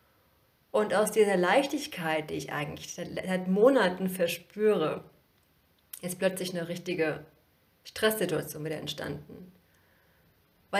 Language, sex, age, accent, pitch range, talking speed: German, female, 30-49, German, 160-210 Hz, 100 wpm